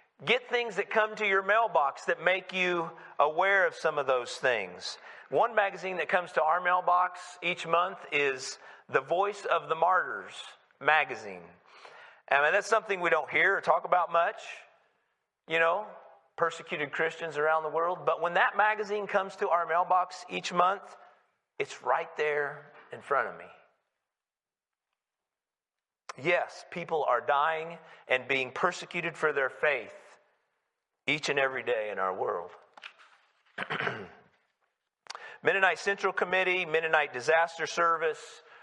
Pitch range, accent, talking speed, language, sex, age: 155-195 Hz, American, 140 wpm, English, male, 40-59